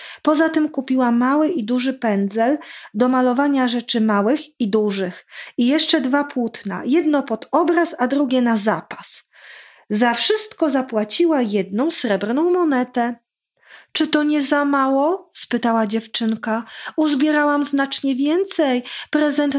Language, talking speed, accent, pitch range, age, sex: Polish, 125 wpm, native, 230-315 Hz, 30-49, female